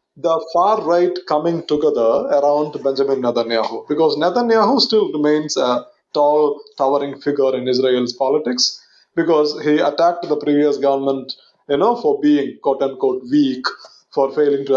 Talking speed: 135 wpm